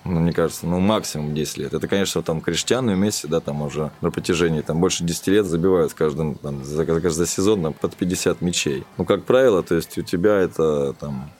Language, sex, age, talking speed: Russian, male, 20-39, 215 wpm